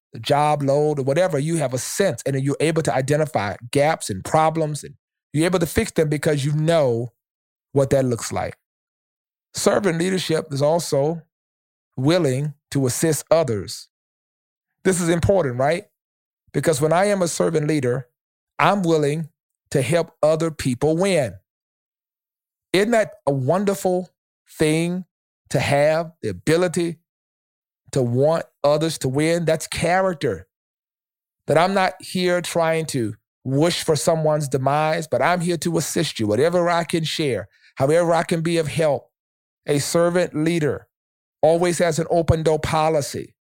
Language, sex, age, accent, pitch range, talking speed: English, male, 40-59, American, 145-170 Hz, 145 wpm